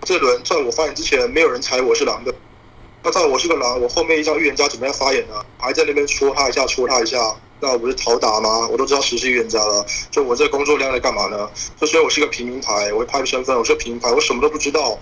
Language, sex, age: Chinese, male, 20-39